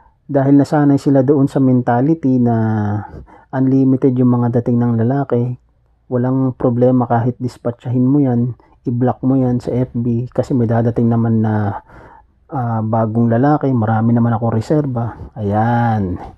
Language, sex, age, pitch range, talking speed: Filipino, male, 40-59, 110-130 Hz, 135 wpm